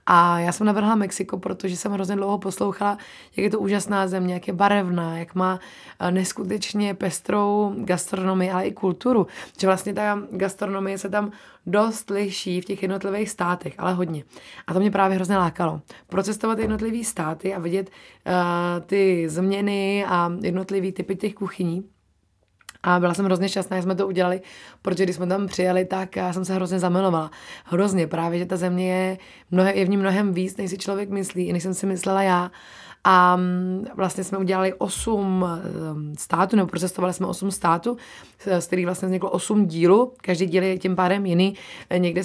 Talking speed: 175 wpm